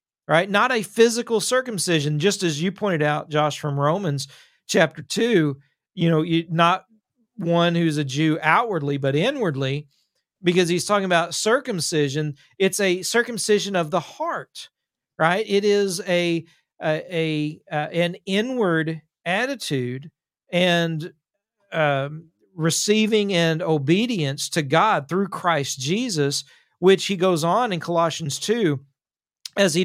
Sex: male